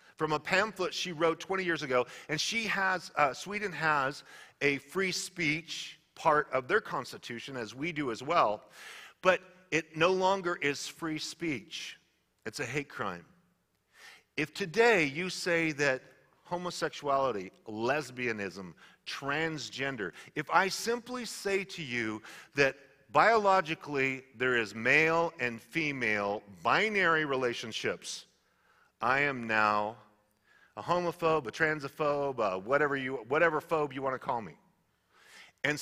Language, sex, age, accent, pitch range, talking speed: English, male, 40-59, American, 135-185 Hz, 125 wpm